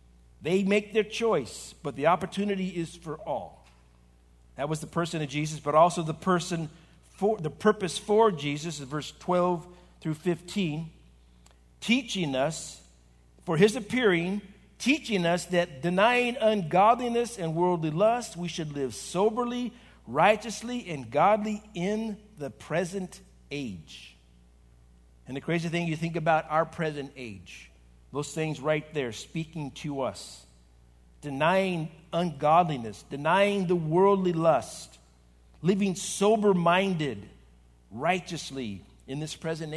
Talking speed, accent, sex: 125 wpm, American, male